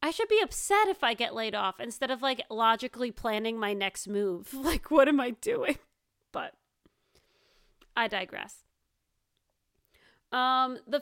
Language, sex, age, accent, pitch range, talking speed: English, female, 30-49, American, 215-300 Hz, 145 wpm